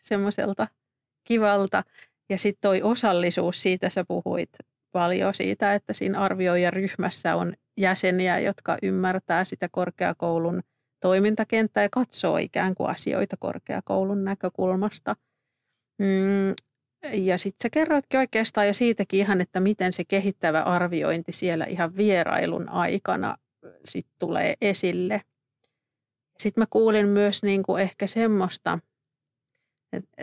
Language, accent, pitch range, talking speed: Finnish, native, 175-200 Hz, 115 wpm